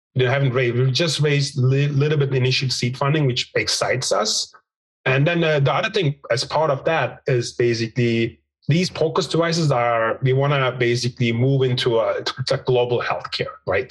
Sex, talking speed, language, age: male, 185 wpm, English, 30-49